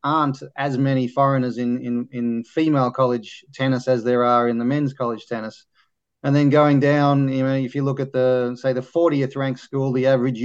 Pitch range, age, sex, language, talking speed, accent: 125-135 Hz, 30-49, male, English, 200 wpm, Australian